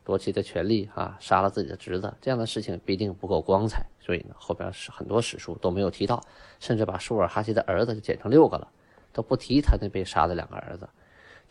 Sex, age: male, 20-39